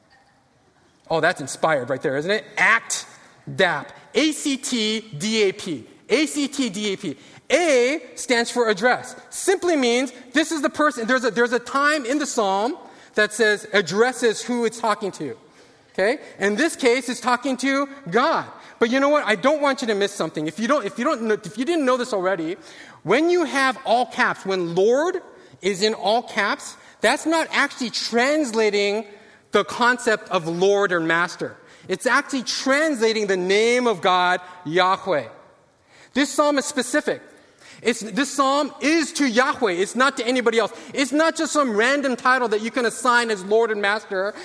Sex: male